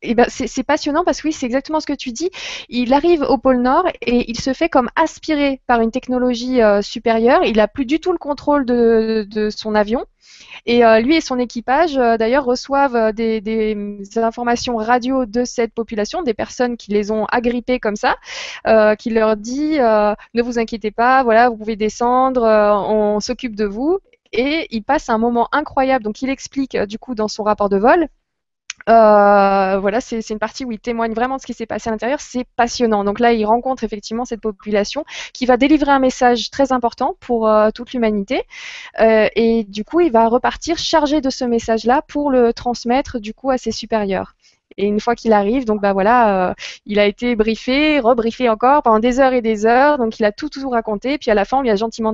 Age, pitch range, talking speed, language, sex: 20-39, 220-270 Hz, 215 wpm, French, female